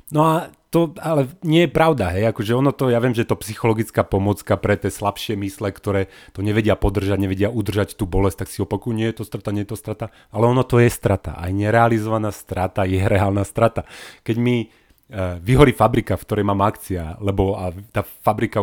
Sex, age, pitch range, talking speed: male, 30-49, 100-115 Hz, 205 wpm